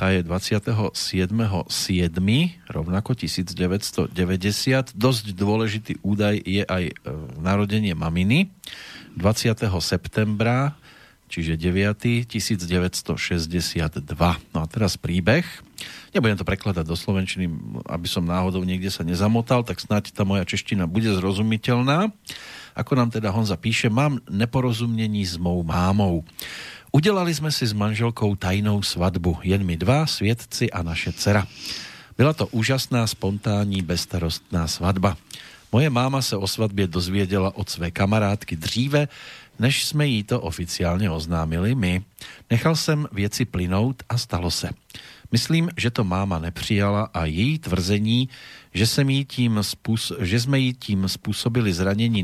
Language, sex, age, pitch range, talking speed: Slovak, male, 40-59, 90-120 Hz, 125 wpm